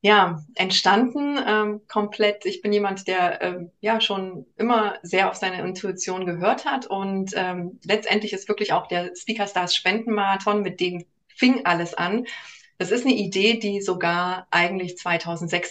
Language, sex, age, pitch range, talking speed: German, female, 30-49, 175-210 Hz, 155 wpm